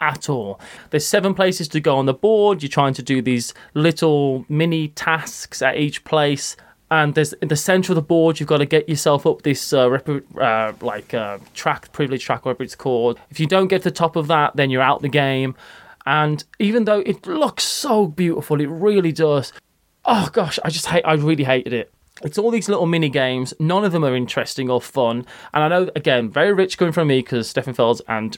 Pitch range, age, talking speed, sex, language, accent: 130-170 Hz, 20-39, 220 wpm, male, English, British